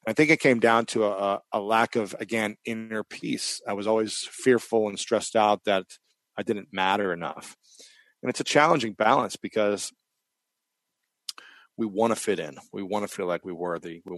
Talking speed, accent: 185 wpm, American